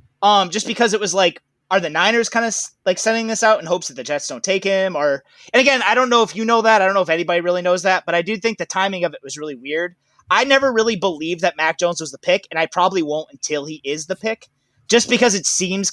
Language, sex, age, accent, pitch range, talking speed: English, male, 20-39, American, 160-220 Hz, 285 wpm